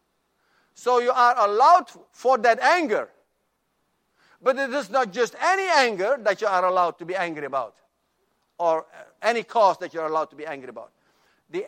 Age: 50-69